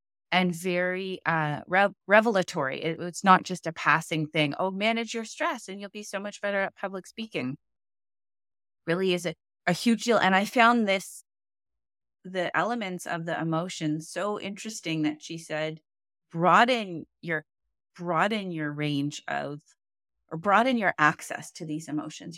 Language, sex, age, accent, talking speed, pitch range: English, female, 30-49, American, 145 wpm, 150-185 Hz